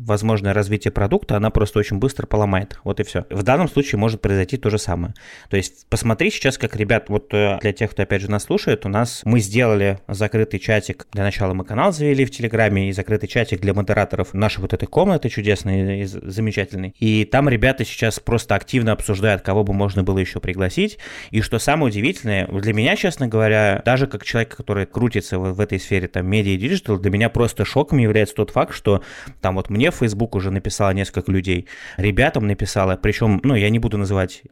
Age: 20-39